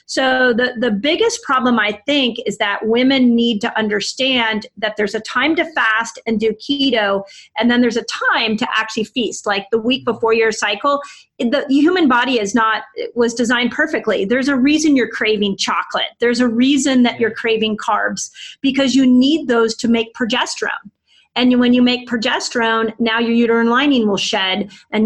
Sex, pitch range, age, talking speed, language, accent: female, 215-255 Hz, 30-49, 185 wpm, English, American